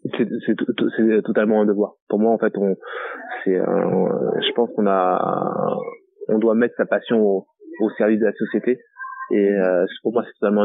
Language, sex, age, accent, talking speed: French, male, 20-39, French, 195 wpm